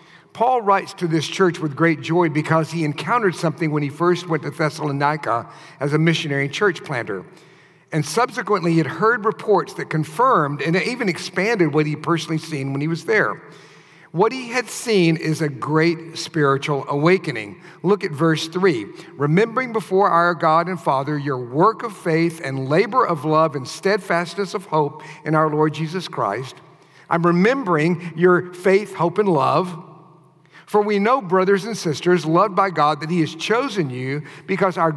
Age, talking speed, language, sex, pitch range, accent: 50-69, 175 wpm, English, male, 150-185 Hz, American